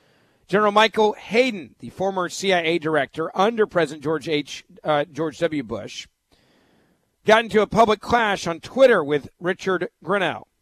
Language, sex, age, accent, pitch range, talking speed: English, male, 50-69, American, 160-215 Hz, 140 wpm